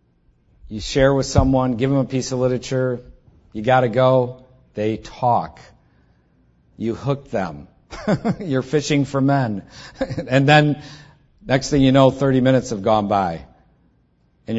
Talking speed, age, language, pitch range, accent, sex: 140 wpm, 50-69, English, 115-140 Hz, American, male